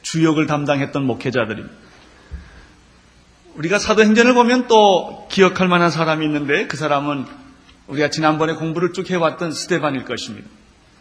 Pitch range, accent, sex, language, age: 145-210 Hz, native, male, Korean, 30-49